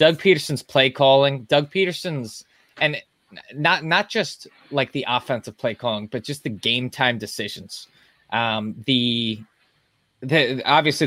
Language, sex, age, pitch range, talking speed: English, male, 20-39, 125-160 Hz, 140 wpm